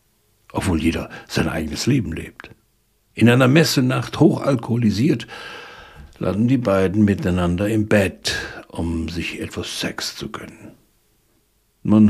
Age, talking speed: 60-79, 115 wpm